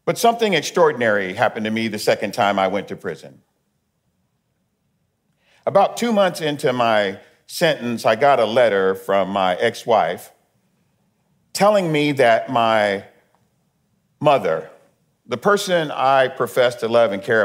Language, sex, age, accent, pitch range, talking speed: English, male, 50-69, American, 105-180 Hz, 135 wpm